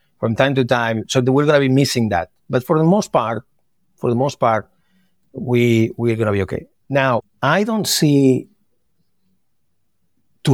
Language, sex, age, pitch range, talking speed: English, male, 60-79, 110-135 Hz, 180 wpm